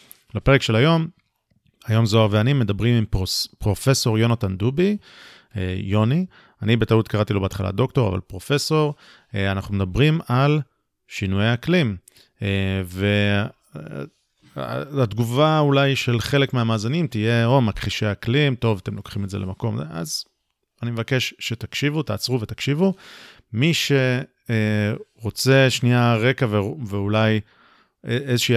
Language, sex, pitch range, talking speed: Hebrew, male, 105-140 Hz, 115 wpm